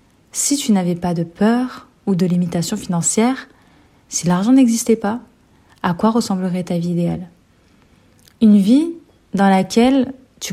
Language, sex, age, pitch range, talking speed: French, female, 30-49, 180-235 Hz, 140 wpm